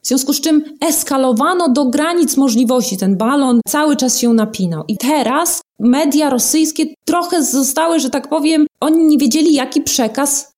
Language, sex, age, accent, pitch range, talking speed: Polish, female, 20-39, native, 220-280 Hz, 160 wpm